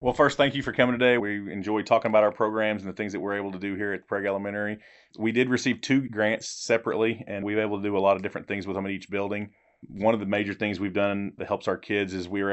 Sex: male